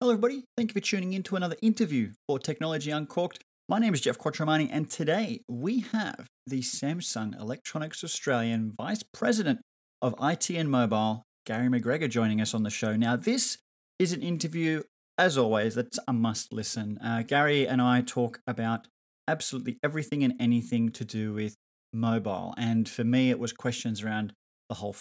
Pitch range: 115-150 Hz